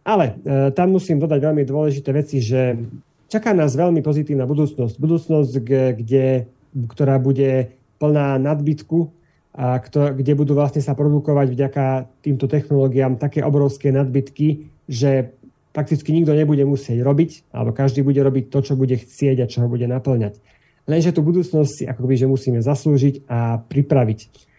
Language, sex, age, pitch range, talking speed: Slovak, male, 30-49, 130-150 Hz, 150 wpm